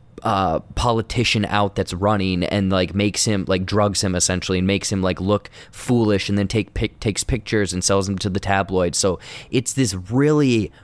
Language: English